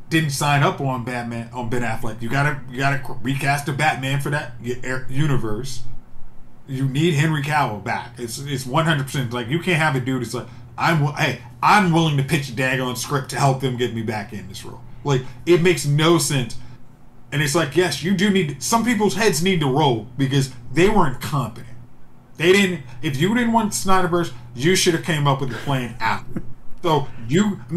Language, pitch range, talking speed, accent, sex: English, 125-160 Hz, 210 wpm, American, male